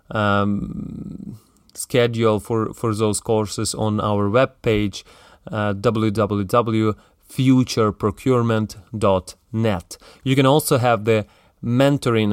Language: English